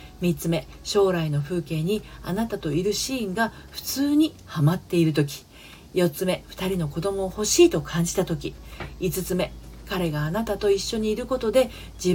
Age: 40-59